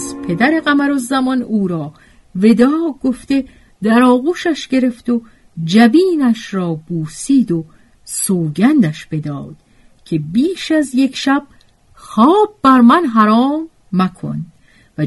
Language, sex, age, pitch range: Persian, female, 50-69, 155-245 Hz